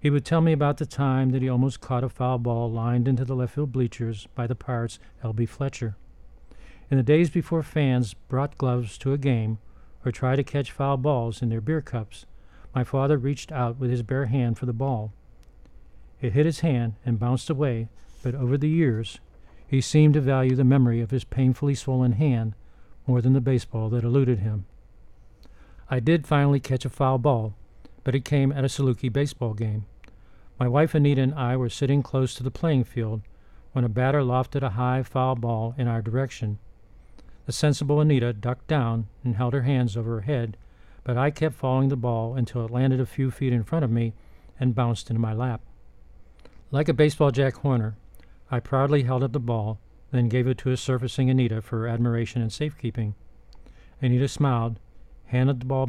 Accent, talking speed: American, 195 wpm